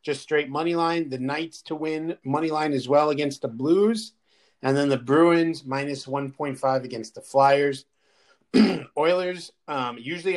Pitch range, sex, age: 130-150 Hz, male, 30-49